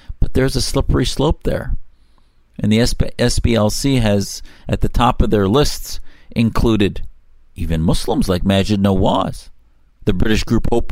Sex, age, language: male, 50-69, English